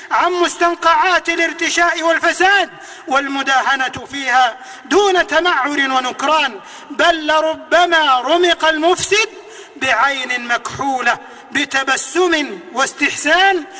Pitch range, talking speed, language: 260-340 Hz, 75 wpm, Arabic